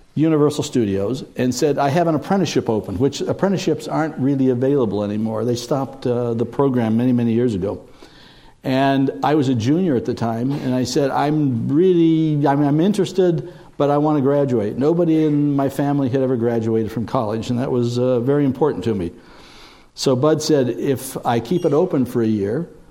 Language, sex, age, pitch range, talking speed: English, male, 60-79, 115-145 Hz, 190 wpm